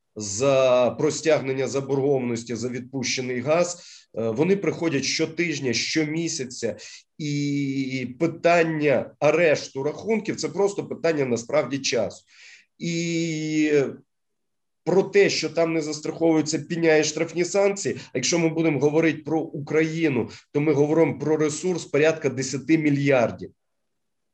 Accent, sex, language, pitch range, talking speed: native, male, Ukrainian, 130-165 Hz, 110 wpm